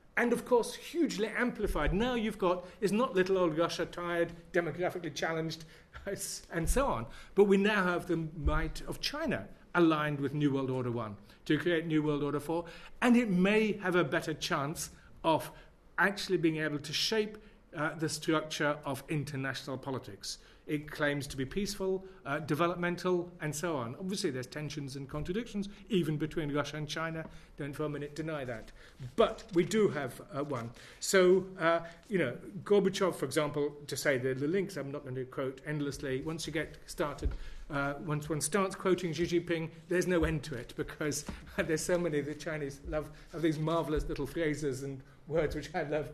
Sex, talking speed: male, 185 wpm